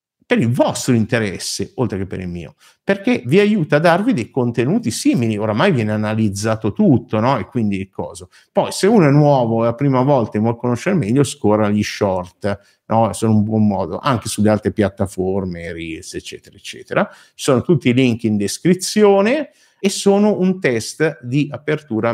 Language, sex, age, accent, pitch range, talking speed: Italian, male, 50-69, native, 110-160 Hz, 180 wpm